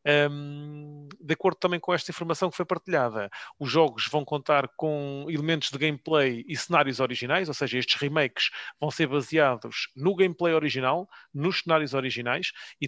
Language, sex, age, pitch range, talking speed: English, male, 30-49, 135-160 Hz, 160 wpm